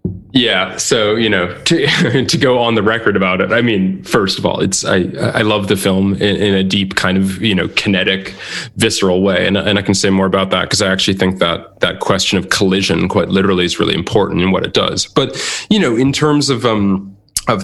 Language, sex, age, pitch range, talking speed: English, male, 20-39, 95-115 Hz, 230 wpm